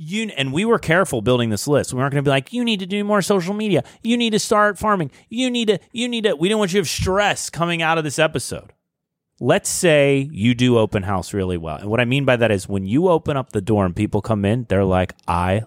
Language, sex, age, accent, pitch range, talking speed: English, male, 30-49, American, 100-150 Hz, 275 wpm